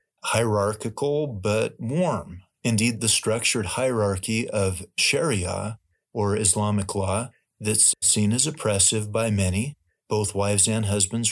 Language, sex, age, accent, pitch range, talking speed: English, male, 40-59, American, 100-115 Hz, 115 wpm